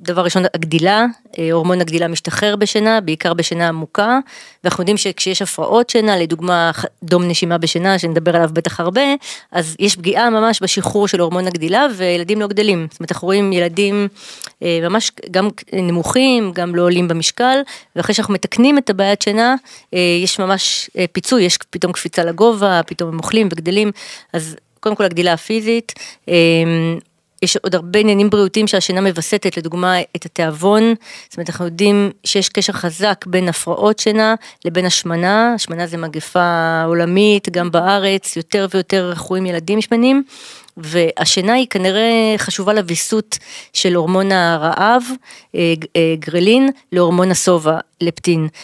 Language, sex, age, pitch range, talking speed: Hebrew, female, 20-39, 170-210 Hz, 145 wpm